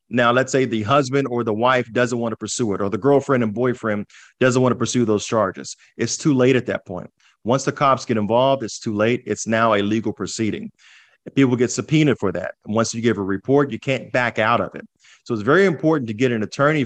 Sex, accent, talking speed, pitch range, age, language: male, American, 240 wpm, 105-135 Hz, 30-49, English